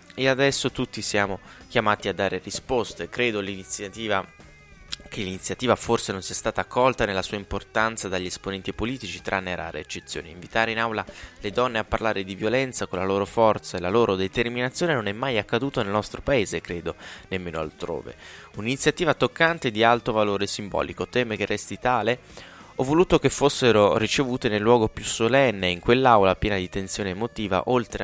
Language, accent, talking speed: Italian, native, 170 wpm